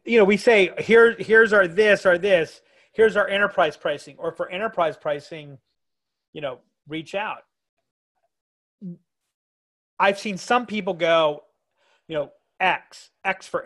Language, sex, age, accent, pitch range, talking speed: English, male, 30-49, American, 145-195 Hz, 140 wpm